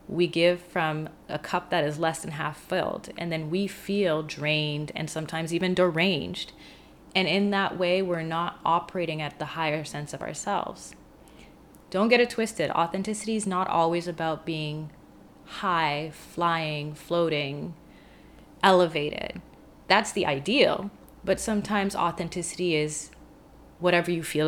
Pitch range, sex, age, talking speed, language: 160-195 Hz, female, 20-39, 140 wpm, English